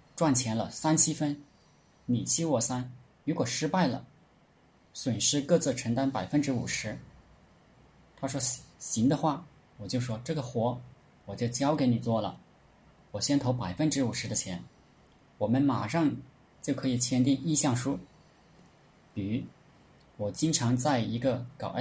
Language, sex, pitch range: Chinese, male, 110-140 Hz